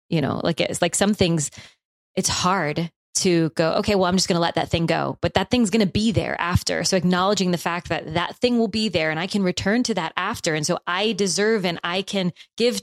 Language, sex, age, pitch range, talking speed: English, female, 20-39, 160-190 Hz, 255 wpm